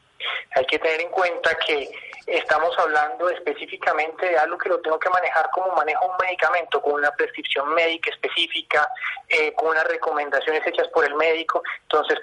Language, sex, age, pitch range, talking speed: Spanish, male, 30-49, 155-210 Hz, 165 wpm